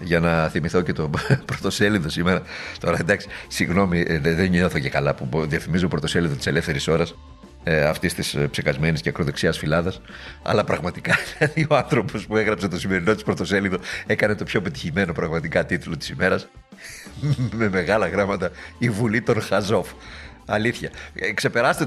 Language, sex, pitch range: Greek, male, 85-110 Hz